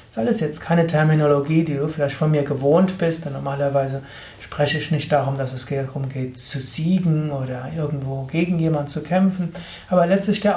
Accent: German